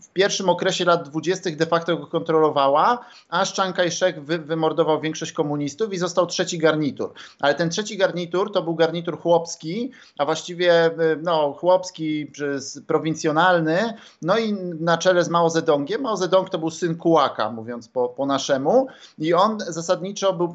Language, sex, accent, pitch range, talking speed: Polish, male, native, 155-185 Hz, 160 wpm